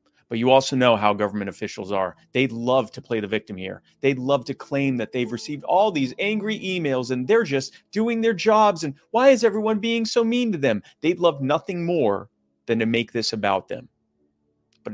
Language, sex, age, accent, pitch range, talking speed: English, male, 30-49, American, 105-140 Hz, 210 wpm